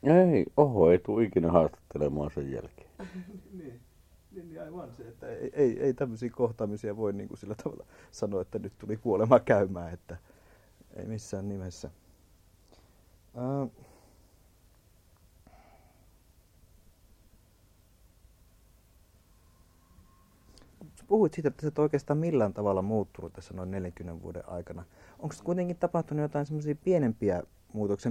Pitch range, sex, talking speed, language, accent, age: 90-130 Hz, male, 115 wpm, Finnish, native, 60-79